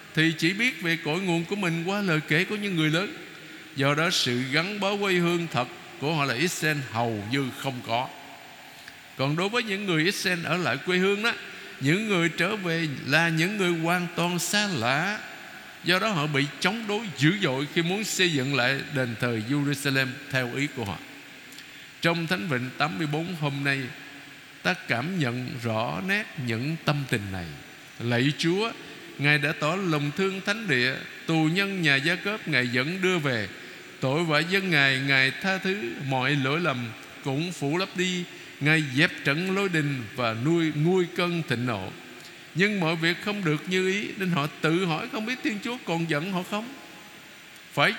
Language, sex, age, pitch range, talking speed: Vietnamese, male, 60-79, 140-185 Hz, 190 wpm